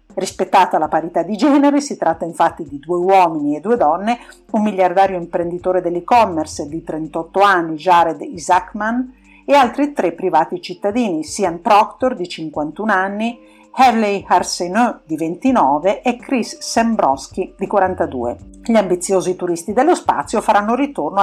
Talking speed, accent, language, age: 140 wpm, native, Italian, 50-69